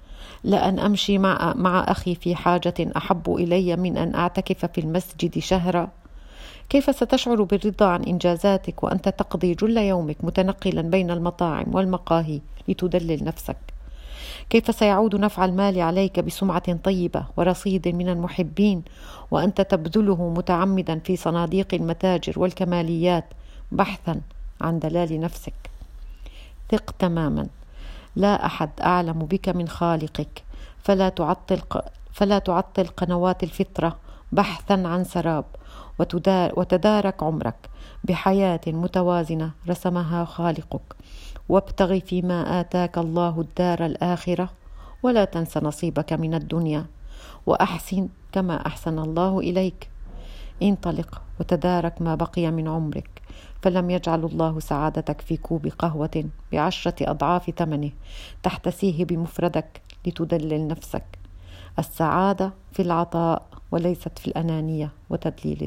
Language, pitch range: Arabic, 160-185 Hz